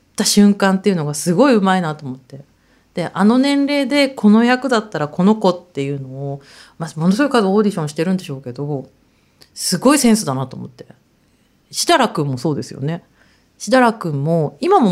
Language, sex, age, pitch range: Japanese, female, 40-59, 150-220 Hz